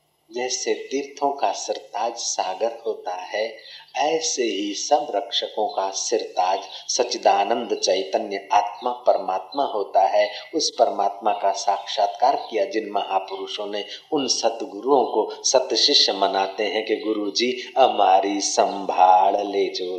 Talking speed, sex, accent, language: 115 wpm, male, native, Hindi